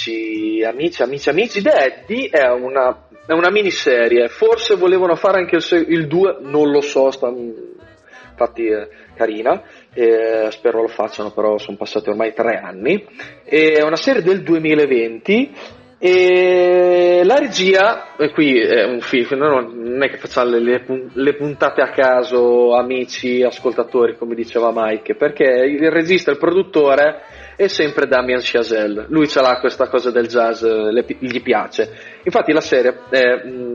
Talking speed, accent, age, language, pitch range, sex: 150 wpm, native, 30-49, Italian, 115-155 Hz, male